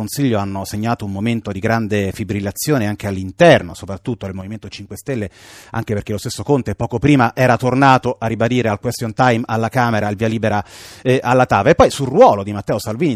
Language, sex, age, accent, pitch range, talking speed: Italian, male, 30-49, native, 110-140 Hz, 205 wpm